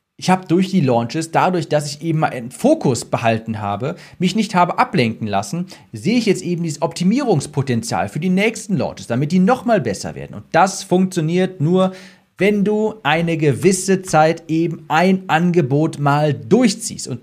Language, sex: German, male